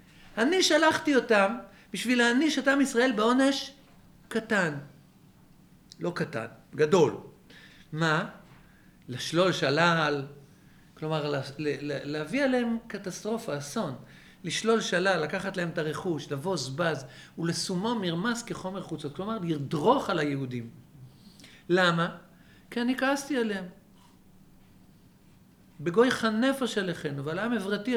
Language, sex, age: Hebrew, male, 50-69